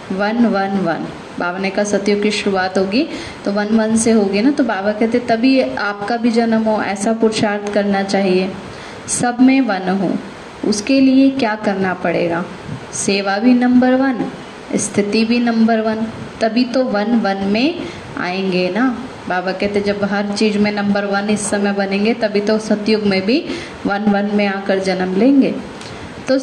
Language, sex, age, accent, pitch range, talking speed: Hindi, female, 20-39, native, 195-235 Hz, 170 wpm